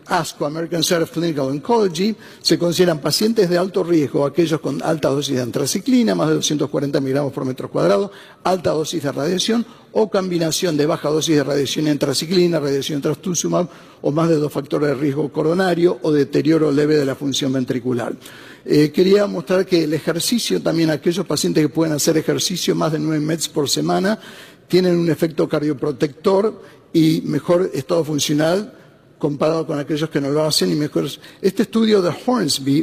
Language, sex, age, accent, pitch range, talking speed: Spanish, male, 50-69, Argentinian, 150-190 Hz, 170 wpm